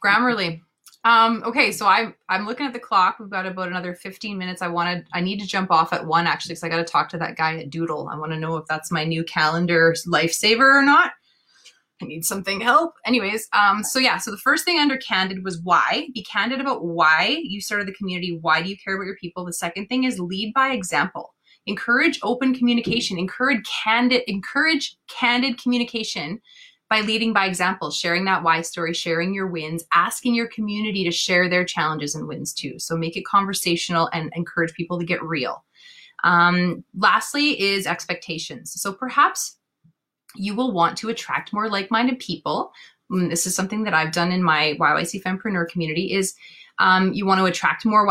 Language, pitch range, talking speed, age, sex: English, 170-225 Hz, 195 wpm, 20-39, female